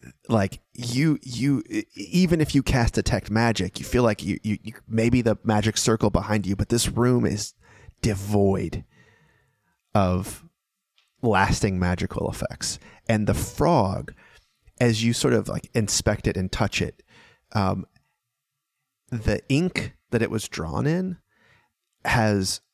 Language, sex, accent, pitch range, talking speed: English, male, American, 95-120 Hz, 135 wpm